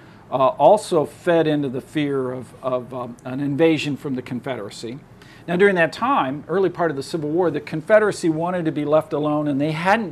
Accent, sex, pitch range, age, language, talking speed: American, male, 135-170 Hz, 50-69, English, 200 wpm